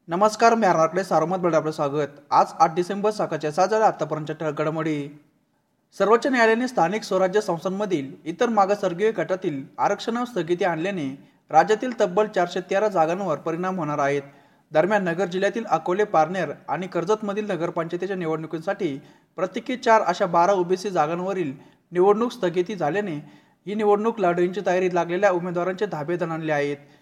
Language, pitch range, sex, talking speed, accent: Marathi, 160-205 Hz, male, 120 wpm, native